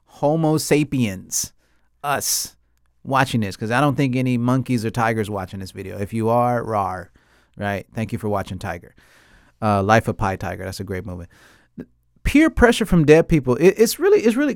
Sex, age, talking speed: male, 30-49, 190 wpm